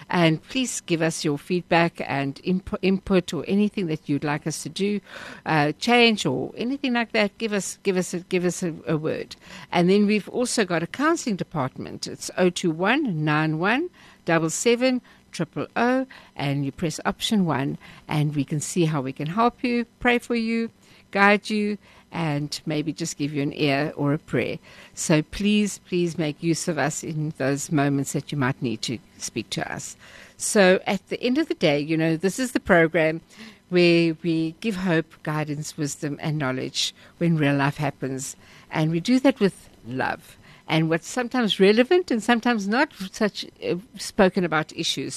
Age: 60-79